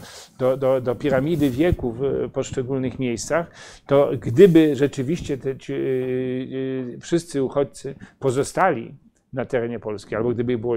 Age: 40-59